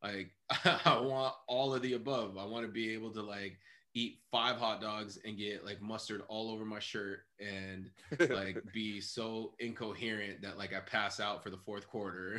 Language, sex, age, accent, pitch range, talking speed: English, male, 20-39, American, 105-135 Hz, 195 wpm